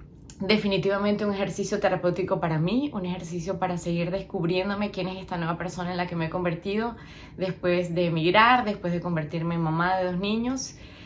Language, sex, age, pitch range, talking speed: Spanish, female, 20-39, 170-195 Hz, 180 wpm